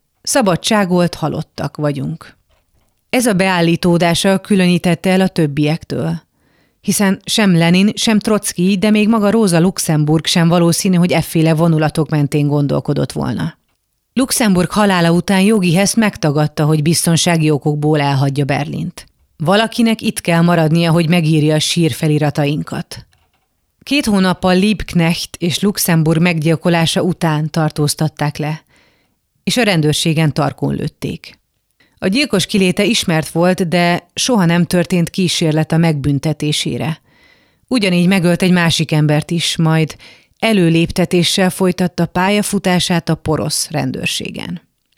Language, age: Hungarian, 30-49